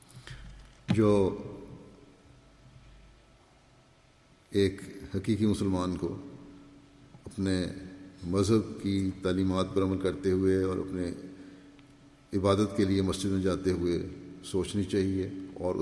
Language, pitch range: English, 90-105 Hz